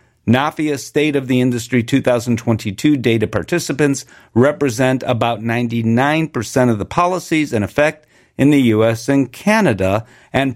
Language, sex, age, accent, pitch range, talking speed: English, male, 50-69, American, 125-175 Hz, 125 wpm